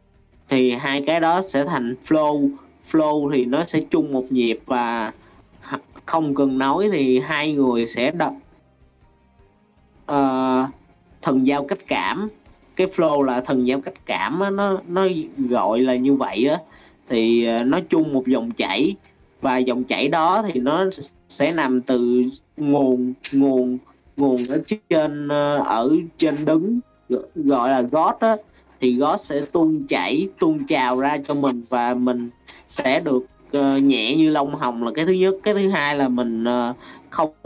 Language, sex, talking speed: Vietnamese, male, 155 wpm